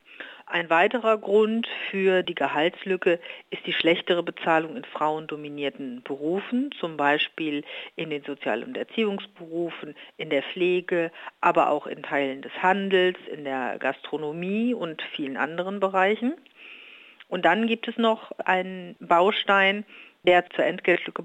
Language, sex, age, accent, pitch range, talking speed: German, female, 50-69, German, 155-195 Hz, 130 wpm